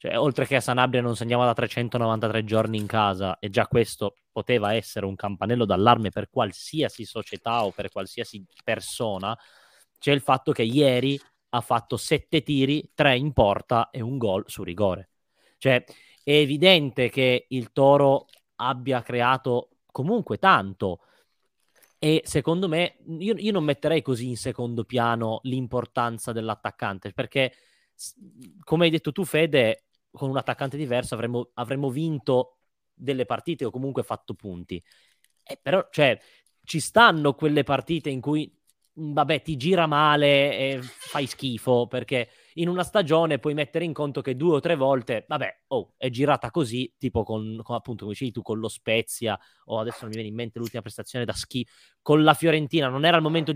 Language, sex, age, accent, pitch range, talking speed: Italian, male, 20-39, native, 115-150 Hz, 165 wpm